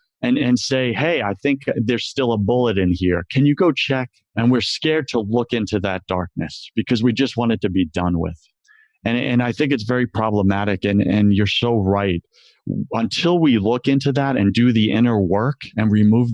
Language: English